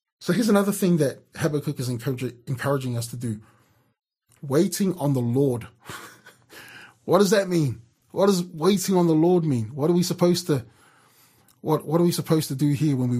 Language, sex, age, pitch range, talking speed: English, male, 20-39, 130-175 Hz, 190 wpm